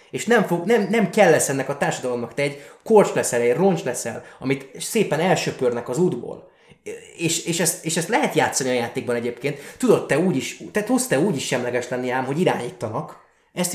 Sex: male